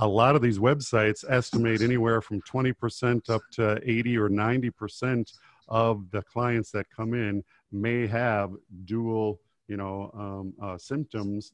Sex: male